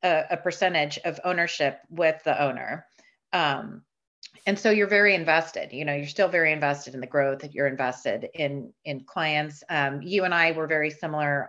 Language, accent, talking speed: English, American, 190 wpm